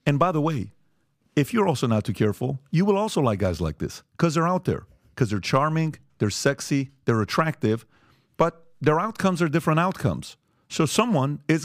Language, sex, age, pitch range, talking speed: English, male, 40-59, 115-150 Hz, 190 wpm